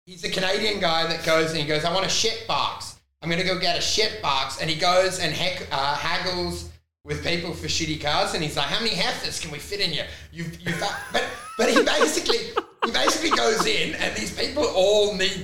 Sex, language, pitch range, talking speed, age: male, English, 170-280 Hz, 235 wpm, 30-49